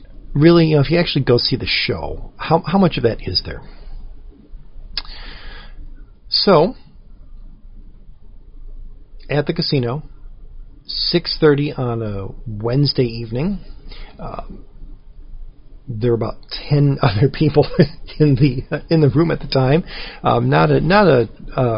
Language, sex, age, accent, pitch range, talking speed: English, male, 40-59, American, 110-155 Hz, 130 wpm